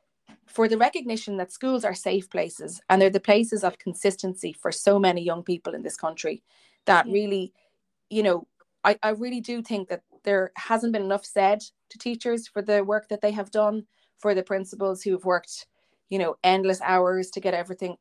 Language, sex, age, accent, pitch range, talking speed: English, female, 30-49, Irish, 185-220 Hz, 195 wpm